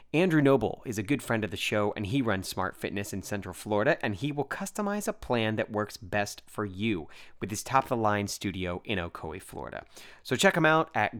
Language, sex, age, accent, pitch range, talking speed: English, male, 30-49, American, 105-155 Hz, 215 wpm